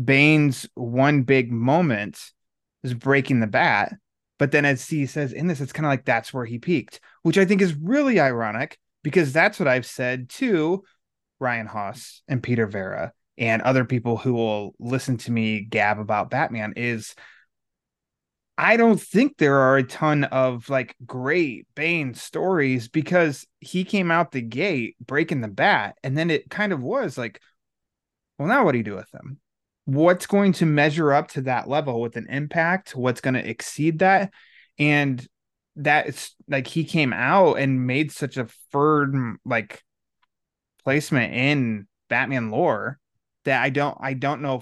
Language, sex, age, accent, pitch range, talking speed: English, male, 20-39, American, 115-150 Hz, 170 wpm